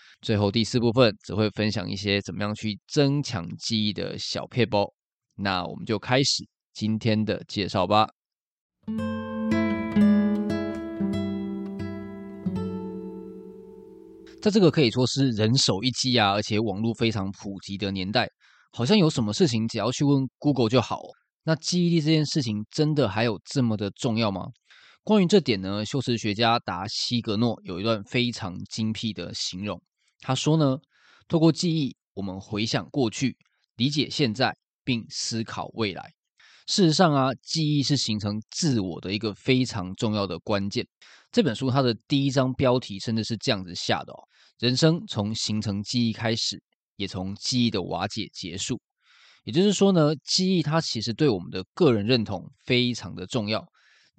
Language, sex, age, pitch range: Chinese, male, 20-39, 100-135 Hz